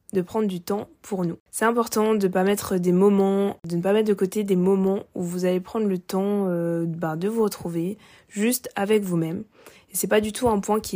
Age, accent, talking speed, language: 20-39, French, 240 wpm, French